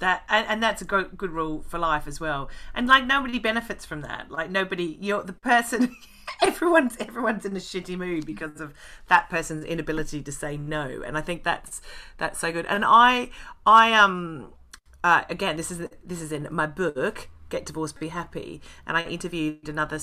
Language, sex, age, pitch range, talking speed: English, female, 40-59, 160-215 Hz, 190 wpm